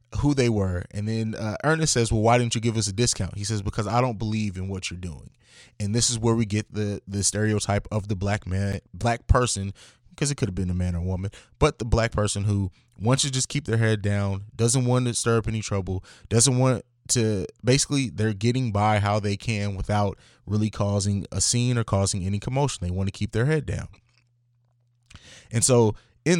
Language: English